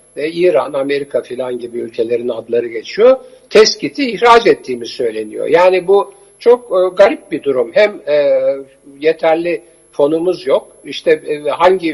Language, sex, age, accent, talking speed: Turkish, male, 60-79, native, 130 wpm